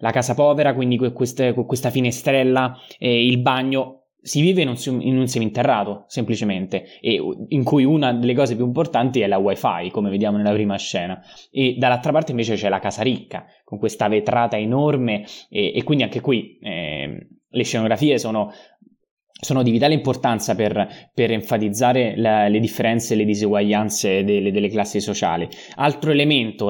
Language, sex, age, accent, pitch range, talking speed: Italian, male, 20-39, native, 105-135 Hz, 160 wpm